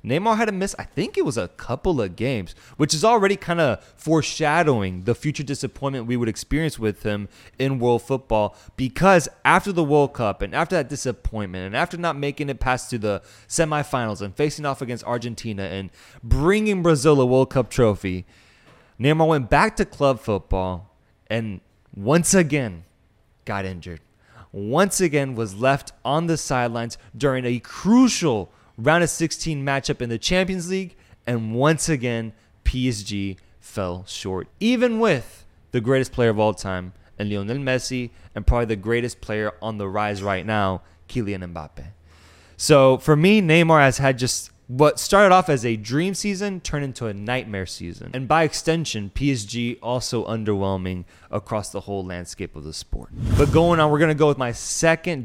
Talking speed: 170 wpm